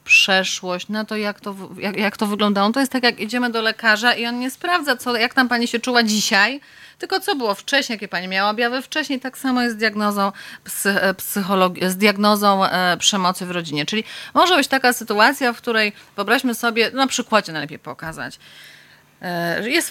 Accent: native